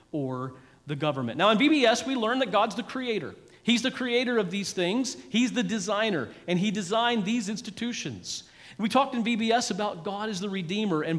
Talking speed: 195 wpm